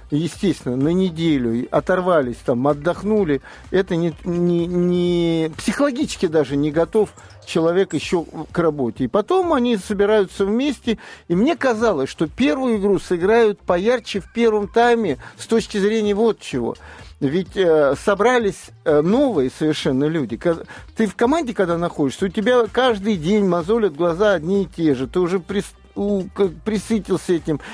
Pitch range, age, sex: 165-220 Hz, 50-69, male